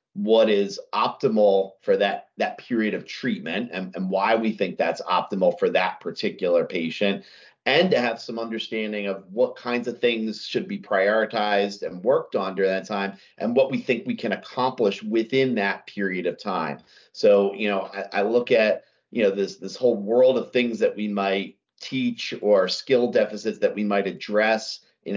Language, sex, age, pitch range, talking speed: English, male, 40-59, 105-130 Hz, 185 wpm